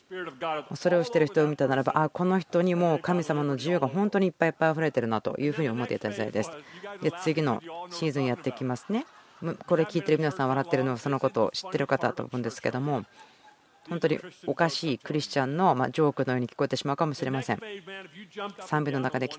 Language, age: Japanese, 40-59